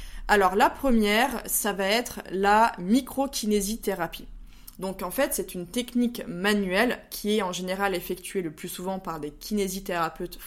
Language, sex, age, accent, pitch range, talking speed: French, female, 20-39, French, 185-235 Hz, 150 wpm